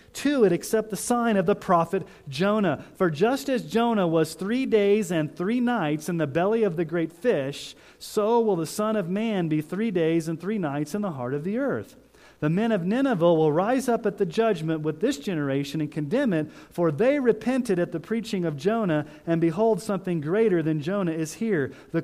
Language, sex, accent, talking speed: English, male, American, 210 wpm